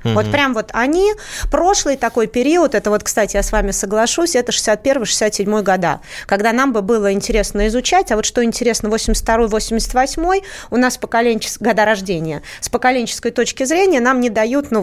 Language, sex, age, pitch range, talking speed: Russian, female, 30-49, 200-250 Hz, 165 wpm